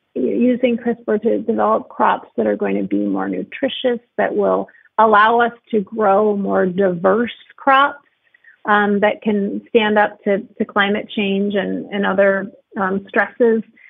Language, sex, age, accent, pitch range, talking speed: English, female, 30-49, American, 190-240 Hz, 150 wpm